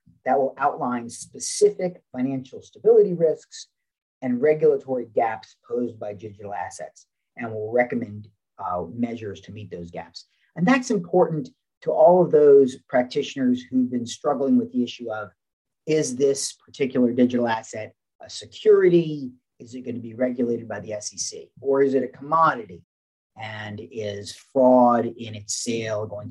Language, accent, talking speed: English, American, 150 wpm